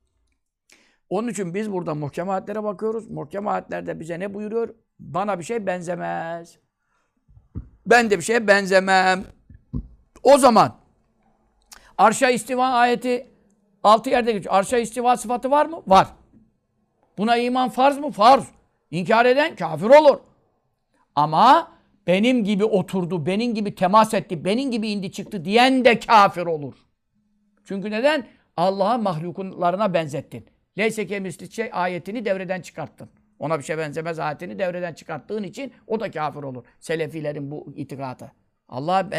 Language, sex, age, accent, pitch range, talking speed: Turkish, male, 60-79, native, 170-235 Hz, 130 wpm